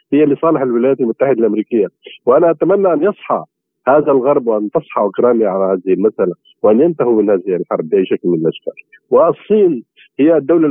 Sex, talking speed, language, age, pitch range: male, 165 wpm, Arabic, 50-69, 120-200 Hz